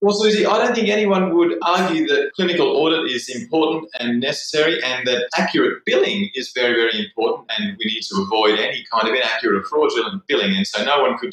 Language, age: English, 30-49